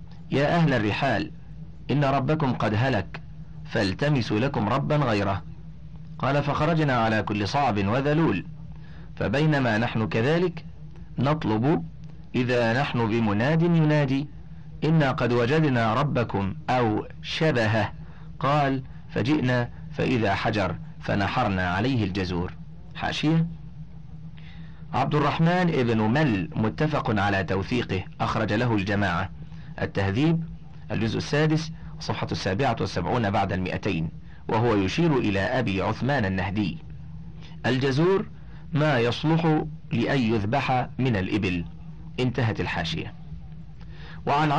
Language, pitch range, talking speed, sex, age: Arabic, 105-155 Hz, 100 wpm, male, 40-59